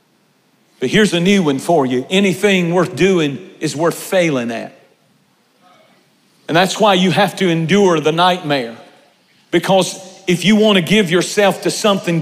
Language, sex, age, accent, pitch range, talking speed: English, male, 50-69, American, 180-215 Hz, 155 wpm